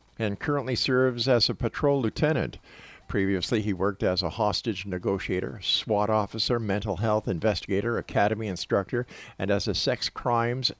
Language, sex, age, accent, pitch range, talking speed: English, male, 50-69, American, 95-125 Hz, 145 wpm